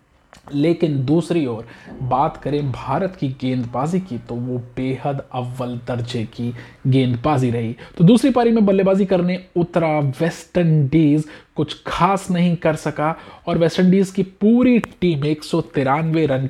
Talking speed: 140 wpm